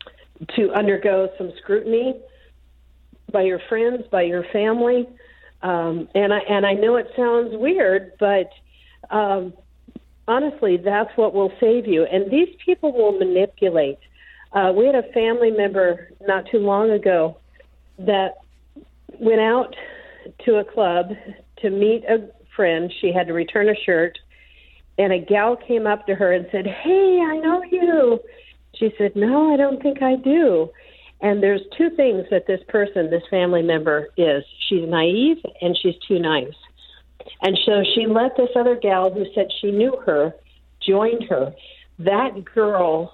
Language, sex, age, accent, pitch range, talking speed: English, female, 50-69, American, 185-235 Hz, 155 wpm